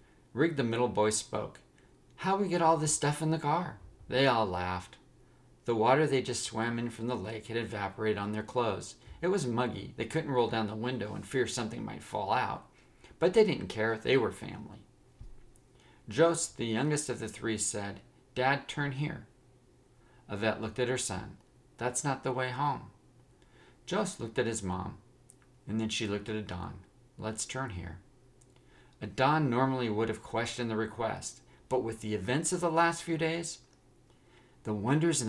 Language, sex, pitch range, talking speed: English, male, 110-135 Hz, 180 wpm